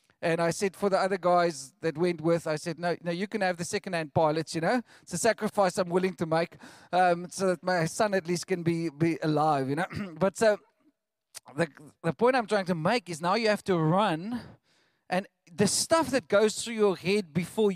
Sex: male